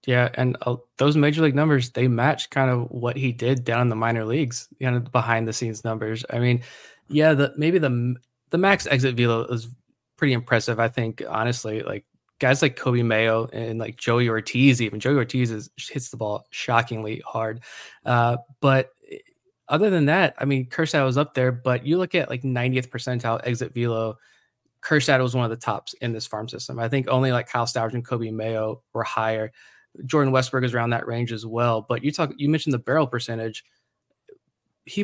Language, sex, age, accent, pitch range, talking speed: English, male, 20-39, American, 115-135 Hz, 200 wpm